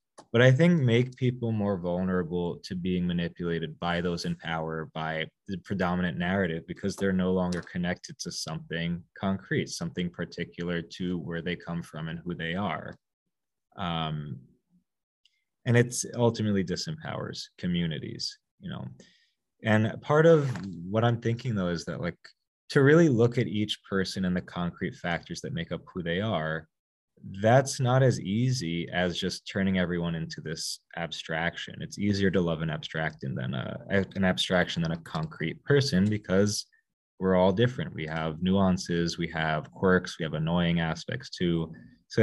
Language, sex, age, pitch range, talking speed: English, male, 20-39, 85-120 Hz, 160 wpm